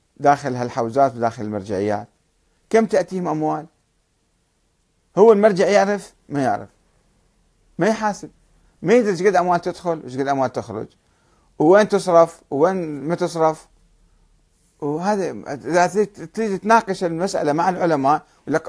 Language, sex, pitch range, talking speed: Arabic, male, 150-200 Hz, 110 wpm